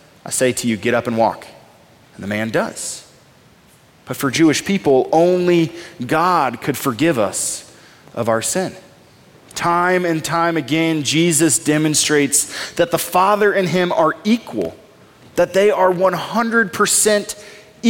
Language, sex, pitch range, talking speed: English, male, 140-205 Hz, 135 wpm